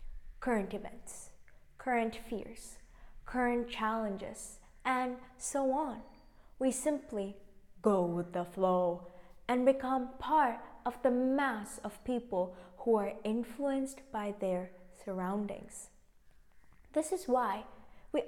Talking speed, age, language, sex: 110 wpm, 20-39, English, female